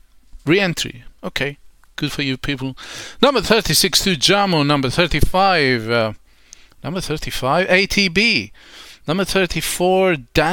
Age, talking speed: 40-59, 105 wpm